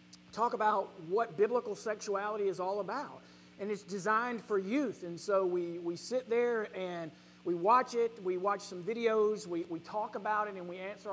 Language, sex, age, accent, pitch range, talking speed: English, male, 40-59, American, 190-245 Hz, 190 wpm